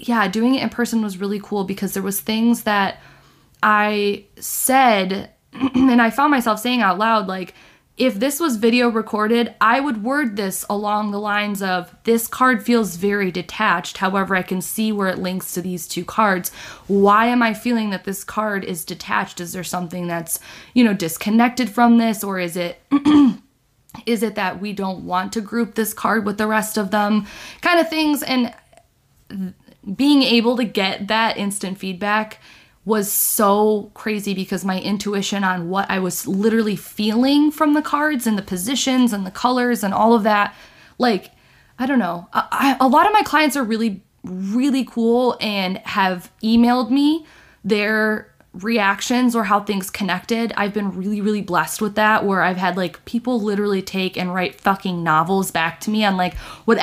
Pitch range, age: 190-235 Hz, 20-39